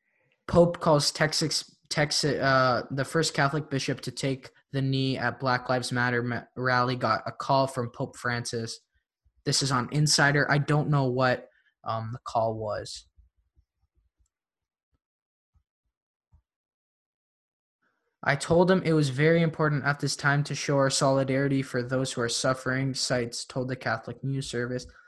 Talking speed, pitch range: 145 wpm, 120-140 Hz